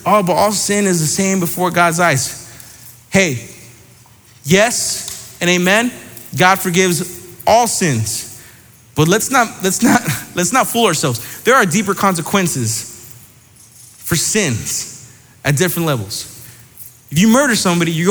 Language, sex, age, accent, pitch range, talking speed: English, male, 20-39, American, 125-180 Hz, 135 wpm